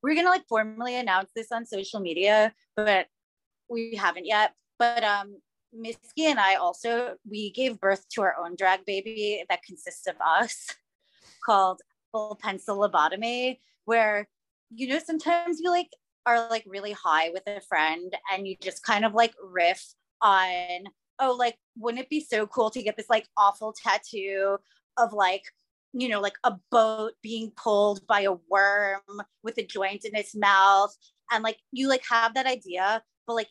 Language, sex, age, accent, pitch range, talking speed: English, female, 20-39, American, 200-240 Hz, 175 wpm